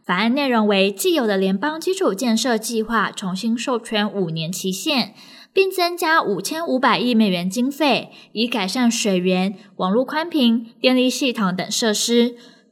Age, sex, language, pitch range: 10-29, female, Chinese, 210-270 Hz